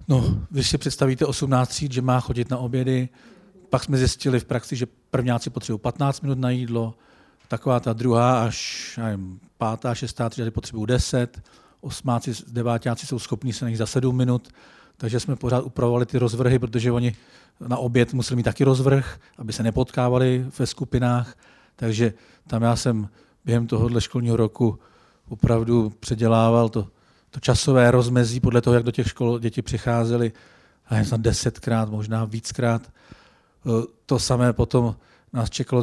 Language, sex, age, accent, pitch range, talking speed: Czech, male, 40-59, native, 115-125 Hz, 155 wpm